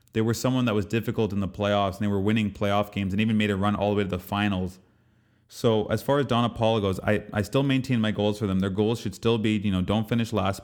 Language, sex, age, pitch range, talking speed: English, male, 20-39, 95-110 Hz, 290 wpm